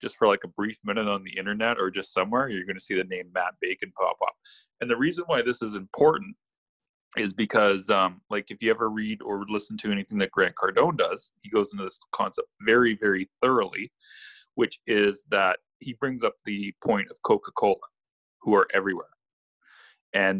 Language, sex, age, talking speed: English, male, 30-49, 195 wpm